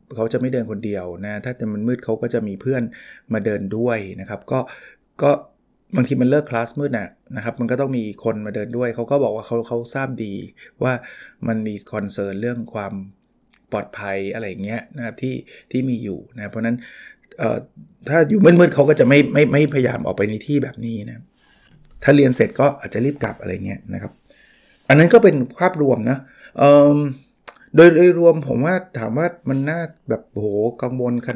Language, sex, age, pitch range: Thai, male, 20-39, 115-145 Hz